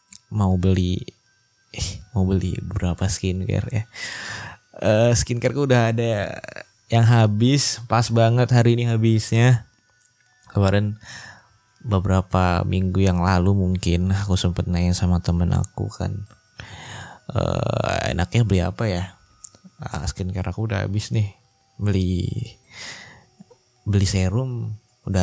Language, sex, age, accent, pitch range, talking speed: Indonesian, male, 20-39, native, 95-115 Hz, 115 wpm